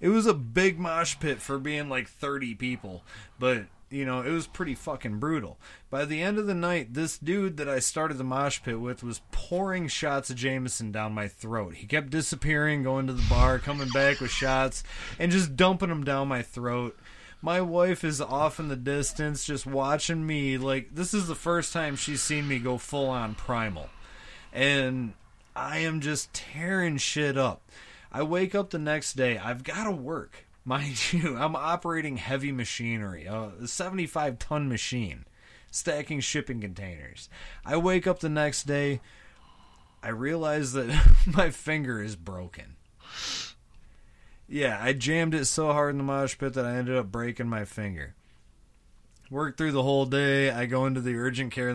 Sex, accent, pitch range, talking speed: male, American, 115-150 Hz, 175 wpm